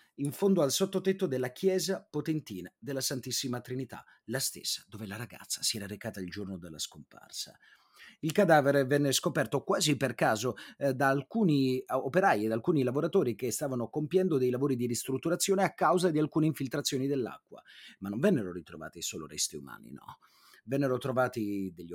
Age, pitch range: 30-49, 125-180 Hz